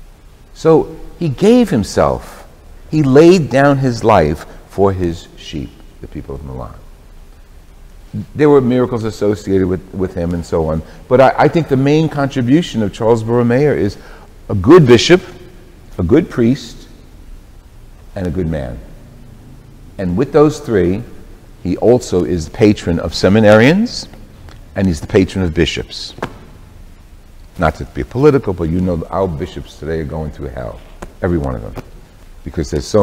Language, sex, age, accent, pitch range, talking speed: English, male, 60-79, American, 80-120 Hz, 155 wpm